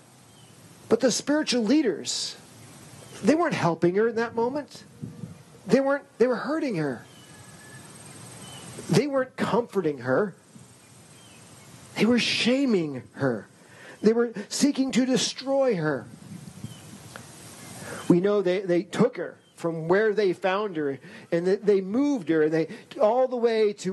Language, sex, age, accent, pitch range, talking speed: English, male, 40-59, American, 155-215 Hz, 135 wpm